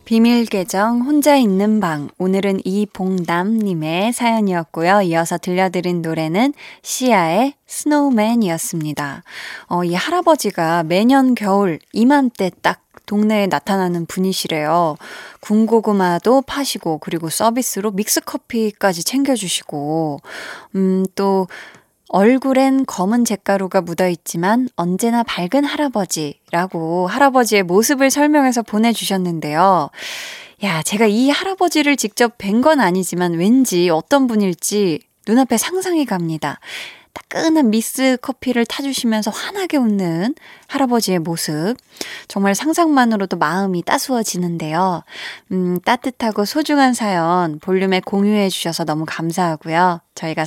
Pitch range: 180-250 Hz